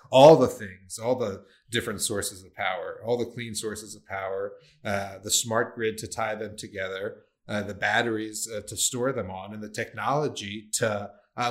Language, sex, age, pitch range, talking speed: English, male, 30-49, 105-120 Hz, 190 wpm